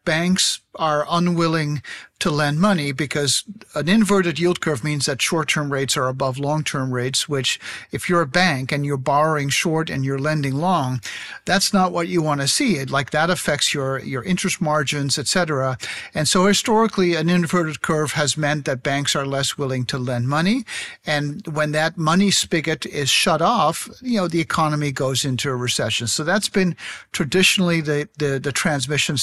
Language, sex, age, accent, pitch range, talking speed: English, male, 50-69, American, 145-180 Hz, 185 wpm